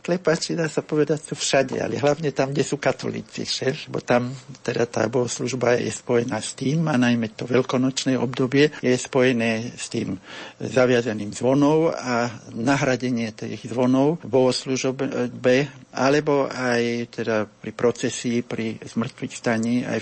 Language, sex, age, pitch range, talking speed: Slovak, male, 60-79, 110-135 Hz, 145 wpm